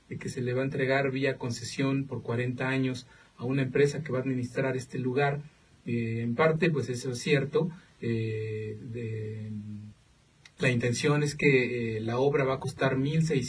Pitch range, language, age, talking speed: 120-145 Hz, English, 40-59, 175 wpm